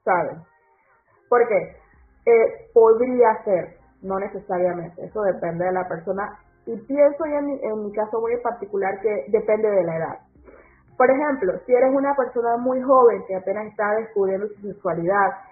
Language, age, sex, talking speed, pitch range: Spanish, 30-49, female, 160 wpm, 195-260 Hz